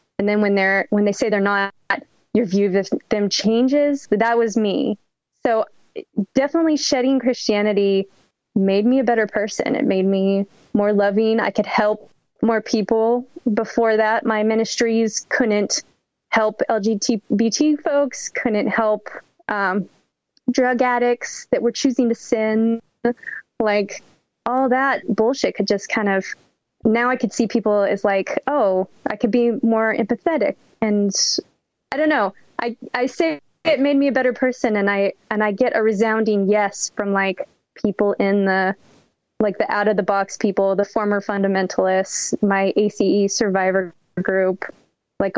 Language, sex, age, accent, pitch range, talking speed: English, female, 20-39, American, 200-245 Hz, 155 wpm